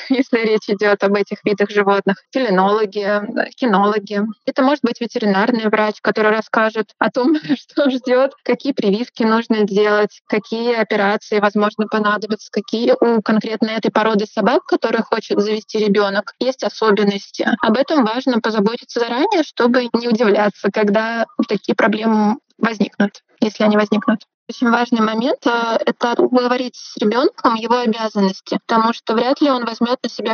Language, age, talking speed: Russian, 20-39, 145 wpm